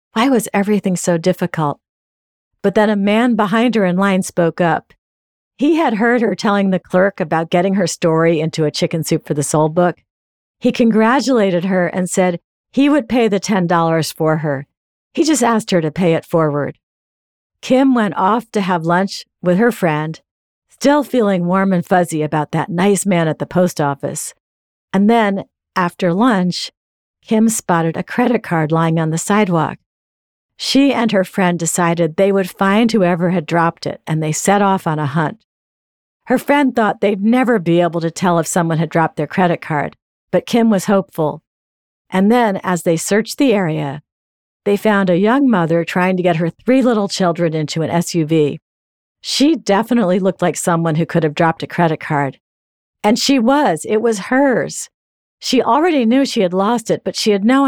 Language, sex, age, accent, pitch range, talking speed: English, female, 50-69, American, 160-215 Hz, 185 wpm